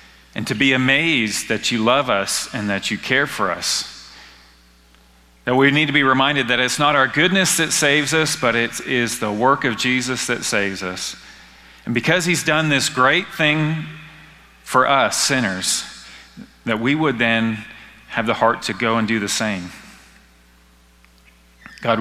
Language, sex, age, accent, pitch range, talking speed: English, male, 40-59, American, 95-135 Hz, 170 wpm